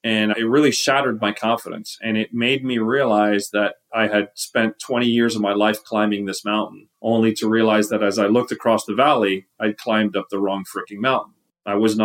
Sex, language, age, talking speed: male, English, 30-49, 215 wpm